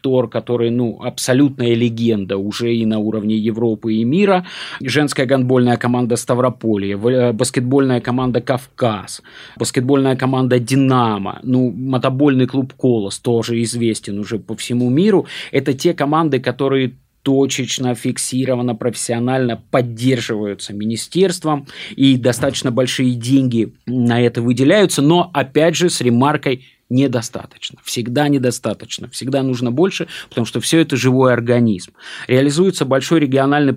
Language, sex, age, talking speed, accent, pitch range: Russian, male, 30-49, 120 wpm, native, 115-140 Hz